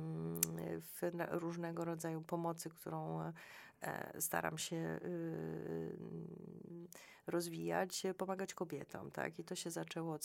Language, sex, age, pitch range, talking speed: Polish, female, 30-49, 155-185 Hz, 95 wpm